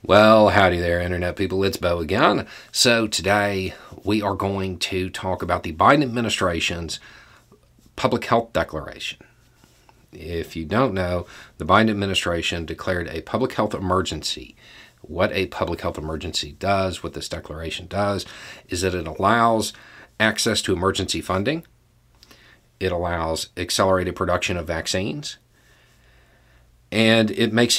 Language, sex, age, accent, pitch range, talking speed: English, male, 40-59, American, 90-110 Hz, 130 wpm